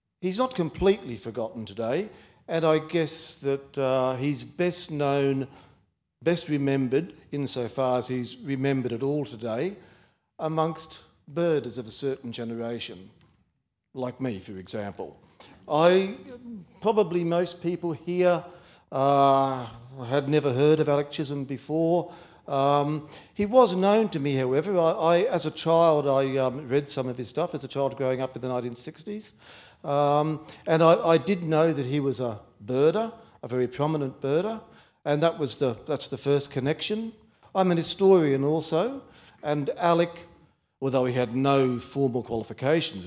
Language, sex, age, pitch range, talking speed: English, male, 50-69, 130-165 Hz, 150 wpm